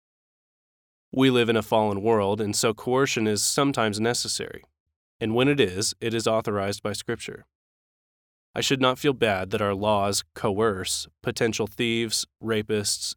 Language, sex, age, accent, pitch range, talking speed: English, male, 20-39, American, 100-120 Hz, 150 wpm